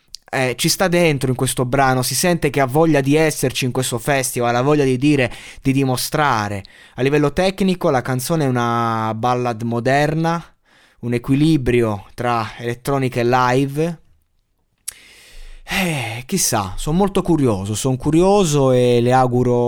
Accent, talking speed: native, 145 wpm